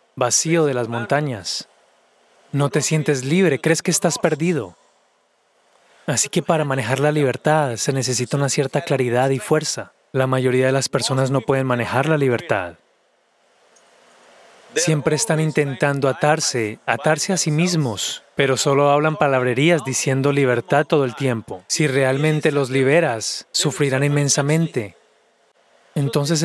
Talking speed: 135 wpm